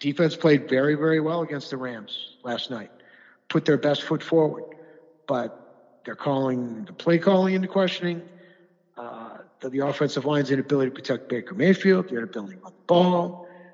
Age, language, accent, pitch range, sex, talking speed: 60-79, English, American, 140-165 Hz, male, 170 wpm